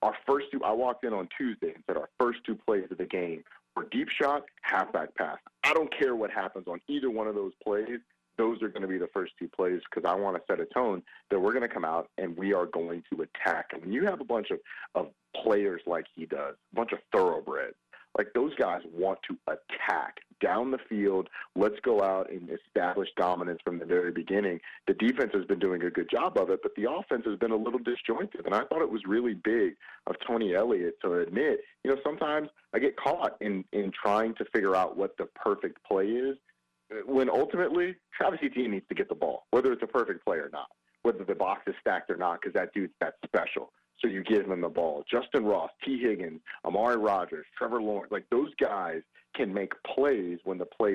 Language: English